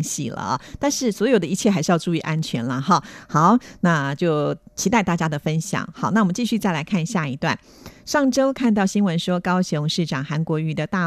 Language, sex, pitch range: Japanese, female, 155-195 Hz